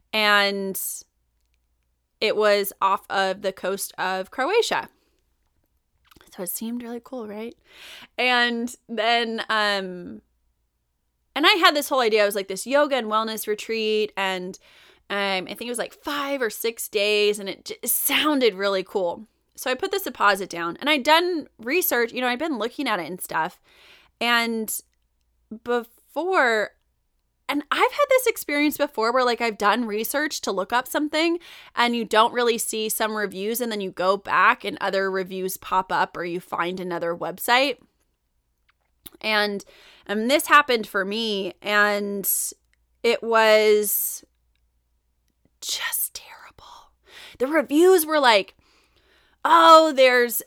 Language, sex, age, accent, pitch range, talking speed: English, female, 20-39, American, 190-280 Hz, 145 wpm